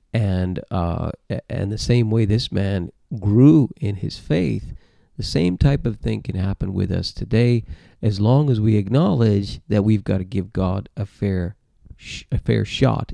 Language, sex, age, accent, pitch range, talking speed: English, male, 40-59, American, 95-115 Hz, 180 wpm